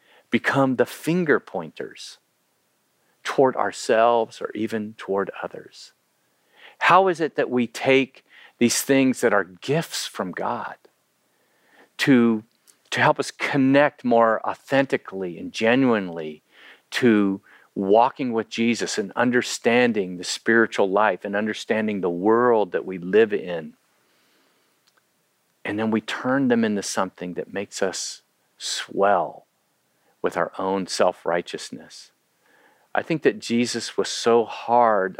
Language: English